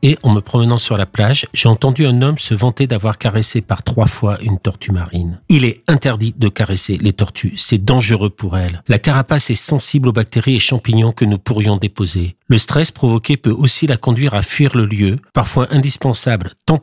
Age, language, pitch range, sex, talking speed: 50-69, French, 110-140 Hz, male, 205 wpm